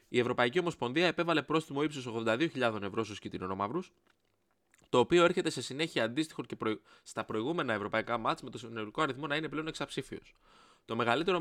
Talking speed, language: 165 wpm, Greek